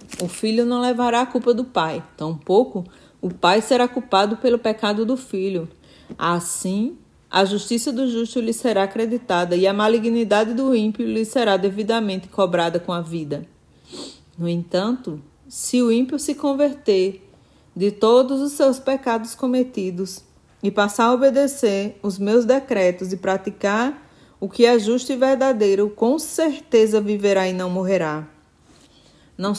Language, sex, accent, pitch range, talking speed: Portuguese, female, Brazilian, 195-245 Hz, 145 wpm